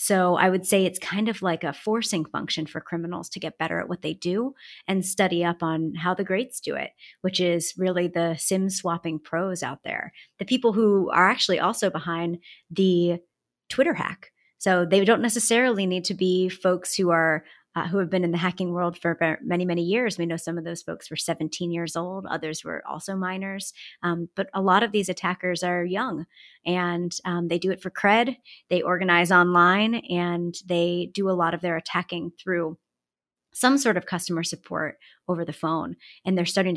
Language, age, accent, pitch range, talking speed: English, 30-49, American, 170-195 Hz, 200 wpm